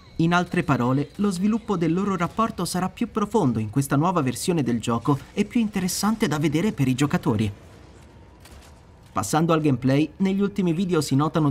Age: 30-49